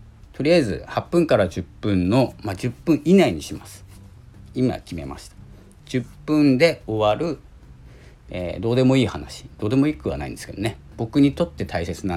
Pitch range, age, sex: 80-125 Hz, 50-69, male